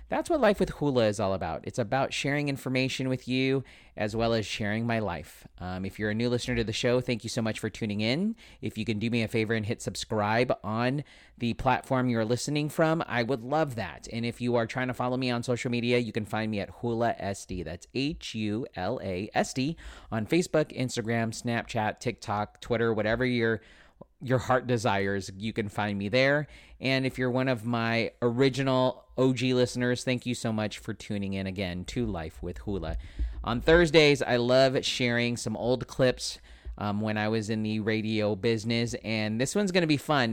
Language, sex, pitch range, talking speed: English, male, 105-130 Hz, 200 wpm